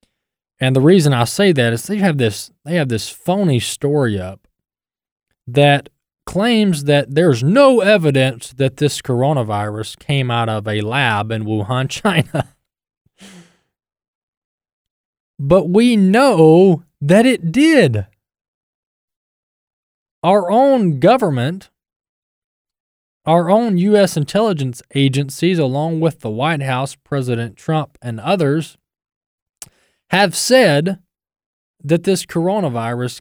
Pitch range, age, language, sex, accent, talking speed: 125-180 Hz, 20-39, English, male, American, 110 wpm